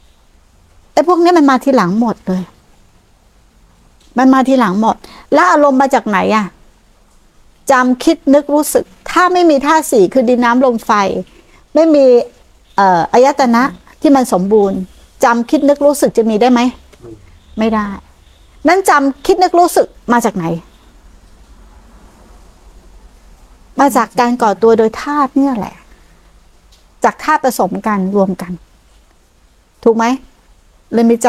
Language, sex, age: Thai, female, 60-79